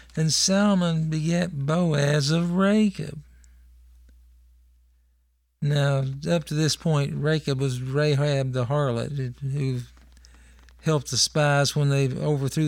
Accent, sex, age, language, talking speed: American, male, 50-69, English, 110 wpm